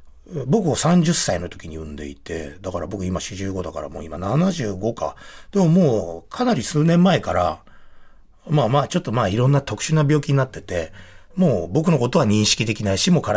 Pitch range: 90-150 Hz